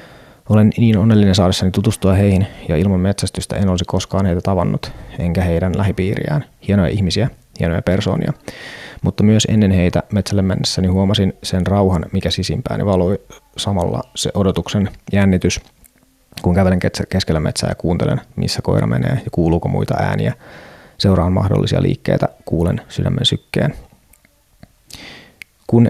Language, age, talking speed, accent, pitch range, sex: Finnish, 30-49, 130 wpm, native, 90-105 Hz, male